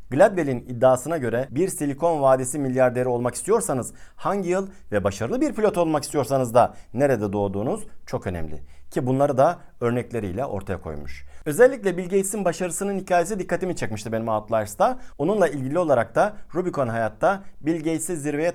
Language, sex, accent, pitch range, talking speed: Turkish, male, native, 95-145 Hz, 150 wpm